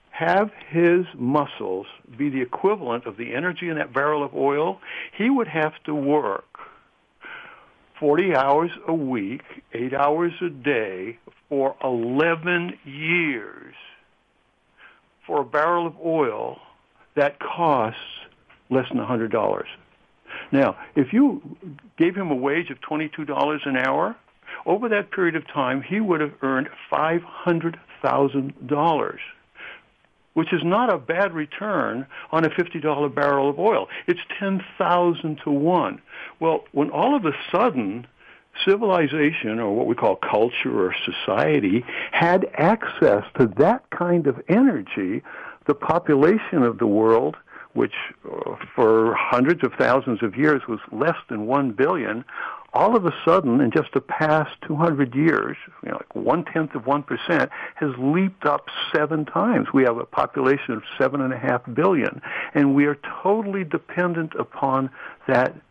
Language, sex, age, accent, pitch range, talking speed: English, male, 60-79, American, 140-185 Hz, 140 wpm